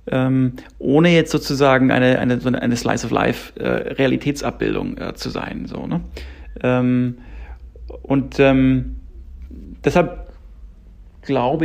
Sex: male